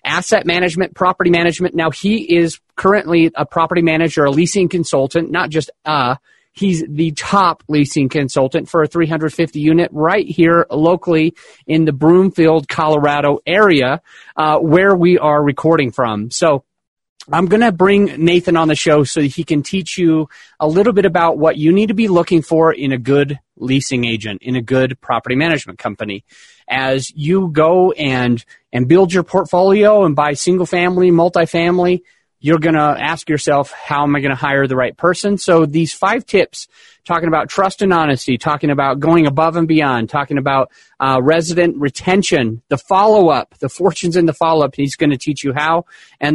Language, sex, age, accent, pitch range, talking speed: English, male, 30-49, American, 145-175 Hz, 180 wpm